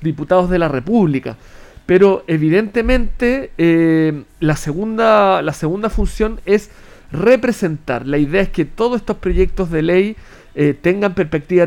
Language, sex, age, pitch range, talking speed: Spanish, male, 40-59, 155-205 Hz, 135 wpm